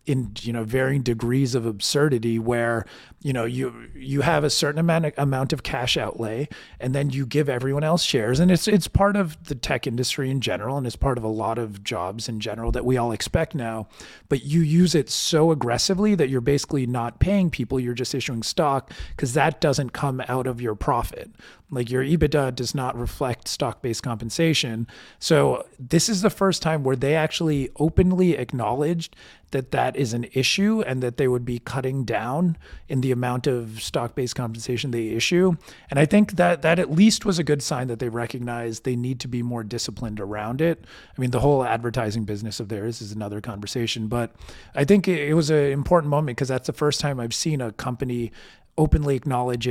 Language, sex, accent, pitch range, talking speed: English, male, American, 120-150 Hz, 205 wpm